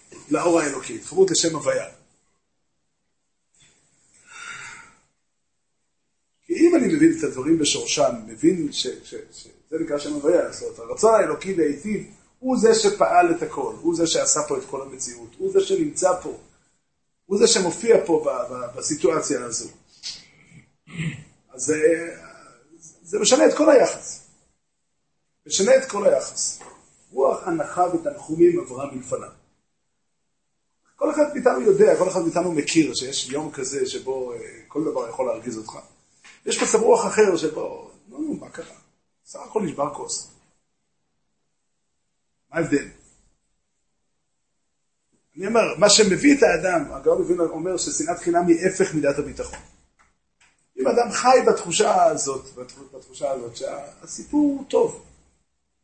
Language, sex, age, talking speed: Hebrew, male, 40-59, 125 wpm